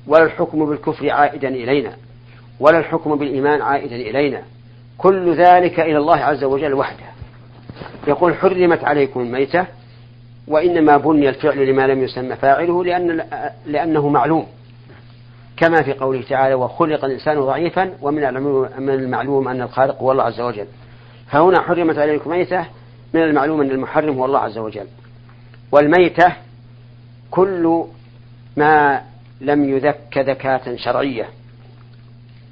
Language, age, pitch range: Arabic, 50-69, 120-145 Hz